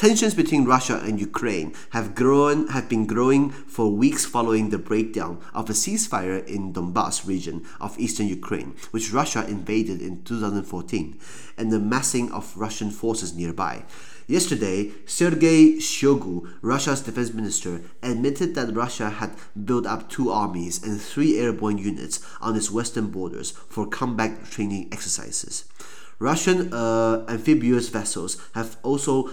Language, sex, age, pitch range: Chinese, male, 30-49, 105-130 Hz